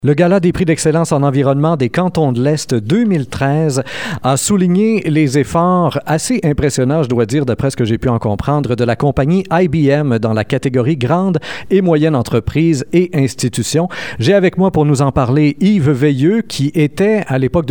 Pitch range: 125-170 Hz